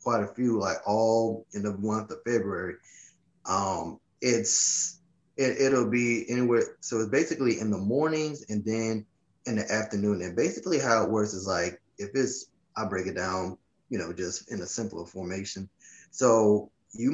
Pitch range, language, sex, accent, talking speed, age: 105-120 Hz, English, male, American, 170 wpm, 20-39